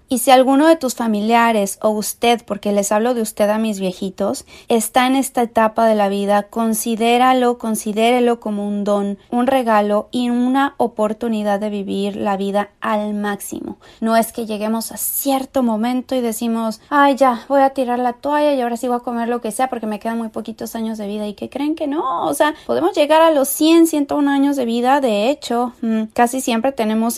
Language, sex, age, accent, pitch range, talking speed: Spanish, female, 30-49, Mexican, 215-260 Hz, 210 wpm